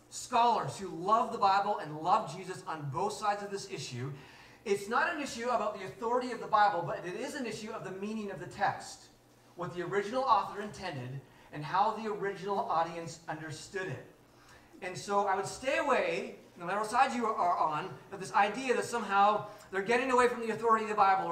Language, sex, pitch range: English, male, 160-220 Hz